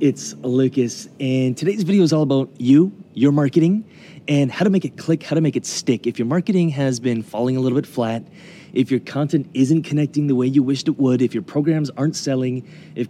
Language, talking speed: English, 225 wpm